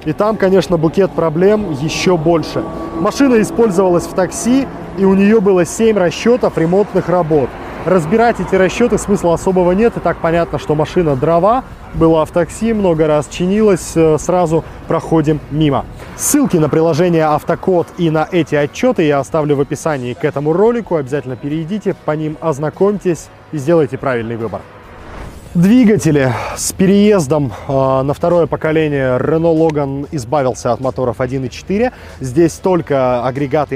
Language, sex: Russian, male